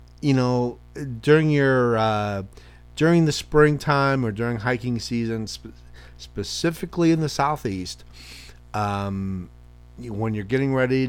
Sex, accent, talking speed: male, American, 125 wpm